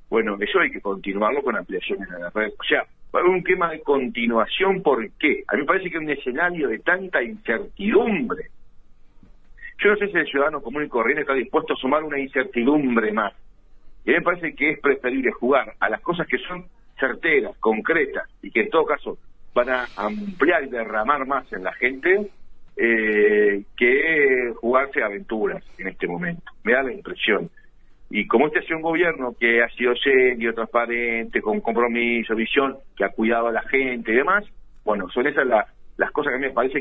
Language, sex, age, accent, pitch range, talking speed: Spanish, male, 50-69, Argentinian, 115-185 Hz, 195 wpm